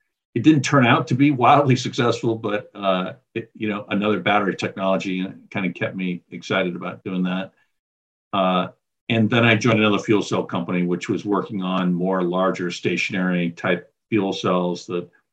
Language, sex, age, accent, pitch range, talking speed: English, male, 50-69, American, 90-115 Hz, 170 wpm